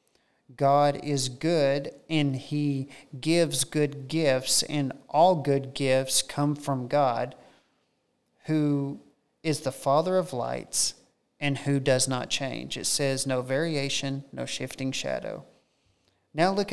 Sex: male